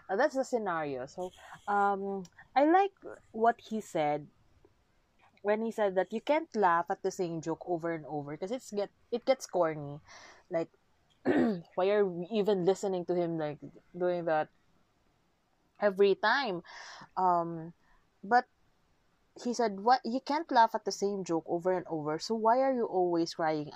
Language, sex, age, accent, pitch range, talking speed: Filipino, female, 20-39, native, 165-230 Hz, 165 wpm